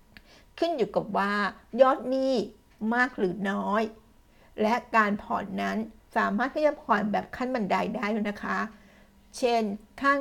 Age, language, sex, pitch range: 60-79, Thai, female, 210-245 Hz